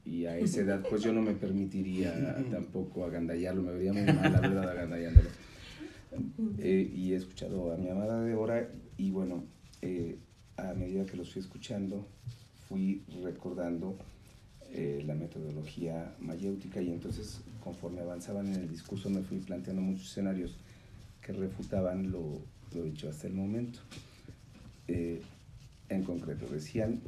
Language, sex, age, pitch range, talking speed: Spanish, male, 40-59, 90-115 Hz, 145 wpm